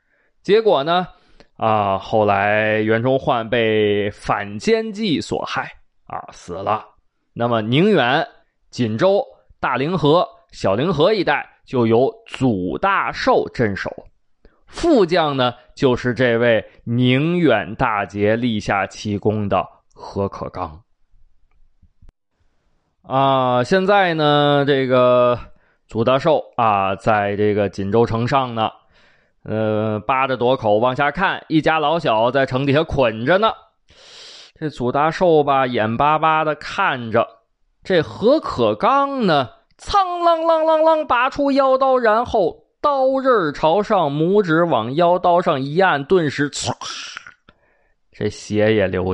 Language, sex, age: Chinese, male, 20-39